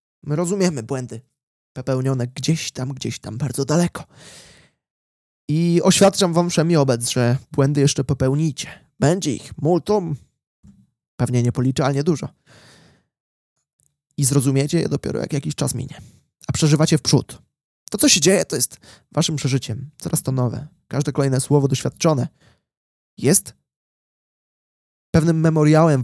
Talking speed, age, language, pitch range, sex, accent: 135 wpm, 20-39, Polish, 125-155 Hz, male, native